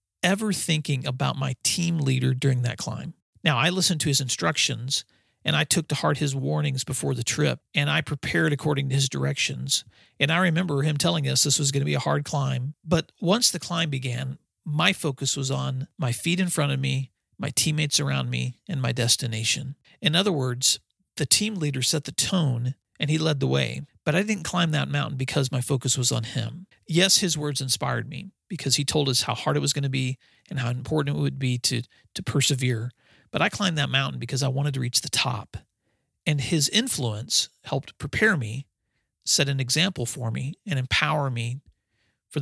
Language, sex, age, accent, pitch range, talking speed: English, male, 40-59, American, 125-155 Hz, 205 wpm